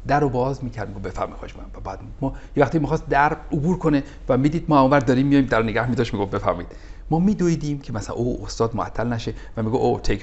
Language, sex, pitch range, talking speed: Persian, male, 90-140 Hz, 230 wpm